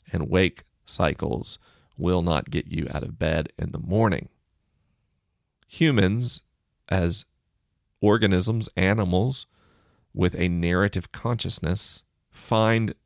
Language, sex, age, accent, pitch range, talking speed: English, male, 40-59, American, 85-110 Hz, 100 wpm